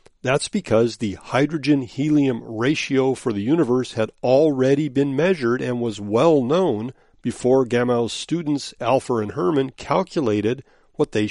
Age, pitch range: 40-59, 115-160 Hz